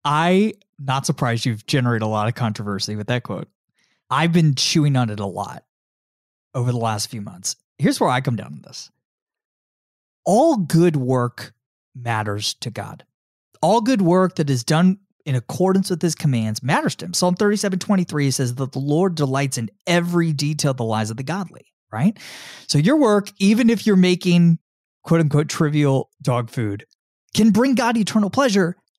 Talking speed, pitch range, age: 180 wpm, 125-195 Hz, 30-49